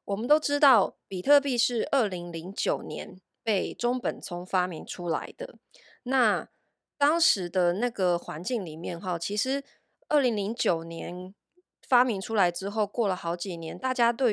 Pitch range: 175-245 Hz